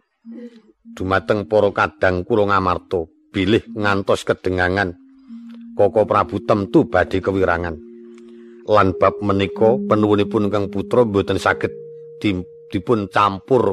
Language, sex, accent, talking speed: Indonesian, male, native, 95 wpm